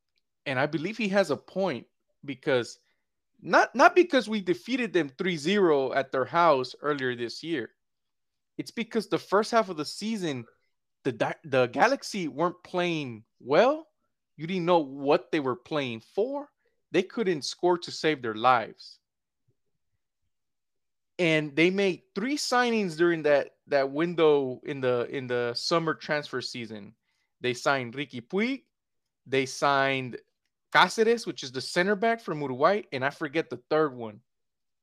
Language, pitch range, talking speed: English, 140-195 Hz, 150 wpm